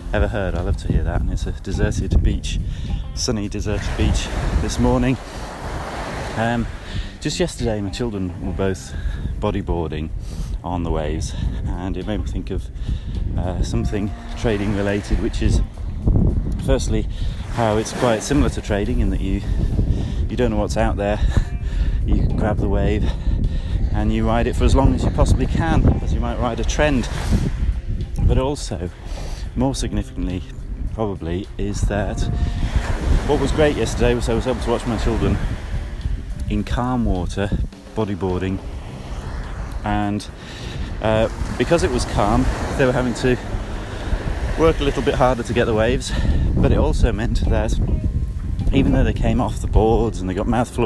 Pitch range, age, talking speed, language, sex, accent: 90-110 Hz, 30-49, 165 wpm, English, male, British